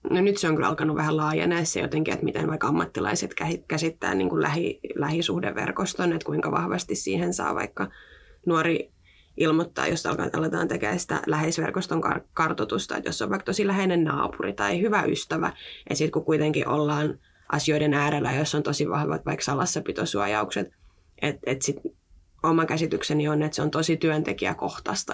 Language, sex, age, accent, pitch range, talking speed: Finnish, female, 20-39, native, 105-165 Hz, 160 wpm